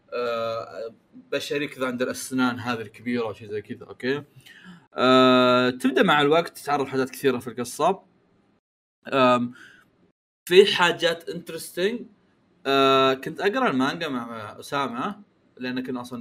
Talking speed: 120 wpm